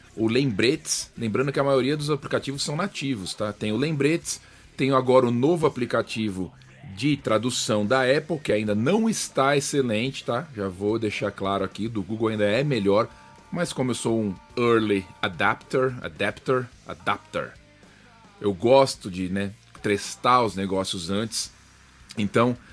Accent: Brazilian